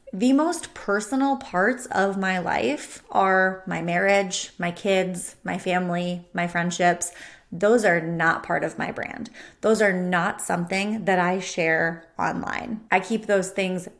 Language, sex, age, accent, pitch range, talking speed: English, female, 30-49, American, 175-215 Hz, 150 wpm